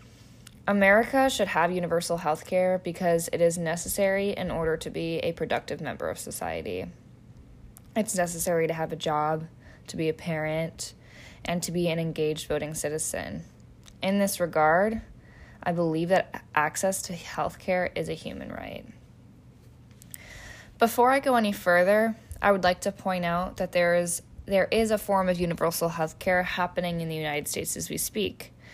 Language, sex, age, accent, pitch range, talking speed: English, female, 10-29, American, 165-195 Hz, 165 wpm